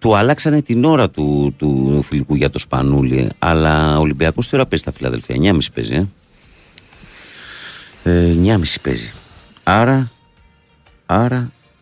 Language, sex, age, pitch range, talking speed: Greek, male, 50-69, 70-95 Hz, 135 wpm